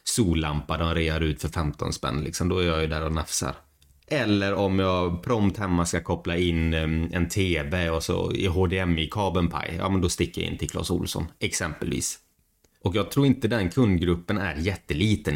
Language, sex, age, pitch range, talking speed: Swedish, male, 30-49, 80-100 Hz, 190 wpm